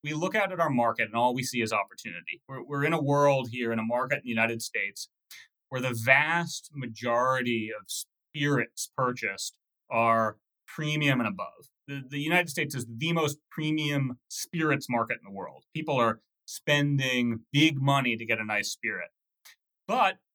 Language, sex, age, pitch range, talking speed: English, male, 30-49, 115-150 Hz, 175 wpm